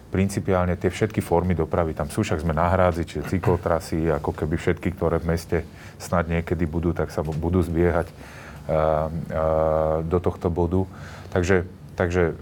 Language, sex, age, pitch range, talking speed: Slovak, male, 30-49, 80-95 Hz, 155 wpm